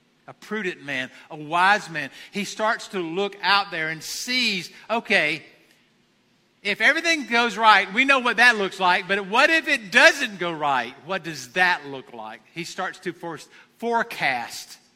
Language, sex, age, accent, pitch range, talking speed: English, male, 50-69, American, 175-230 Hz, 165 wpm